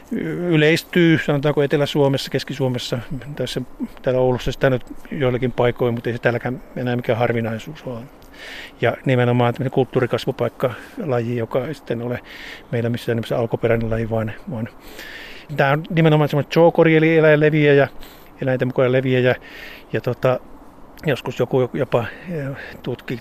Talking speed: 125 wpm